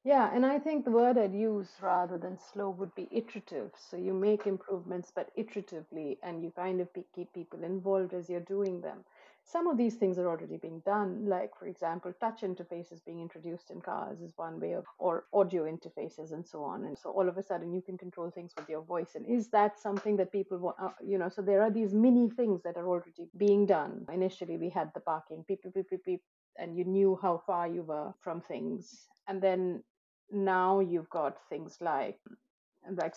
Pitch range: 170-205 Hz